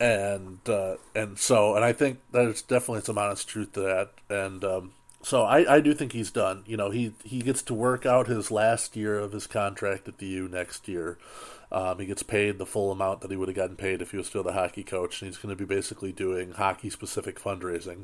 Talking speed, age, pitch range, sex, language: 235 wpm, 30-49, 95-110 Hz, male, English